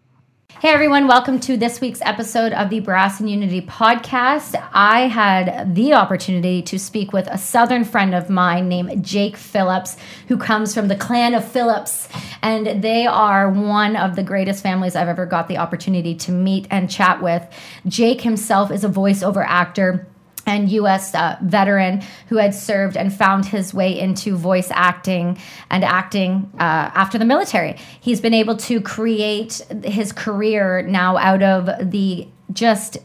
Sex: female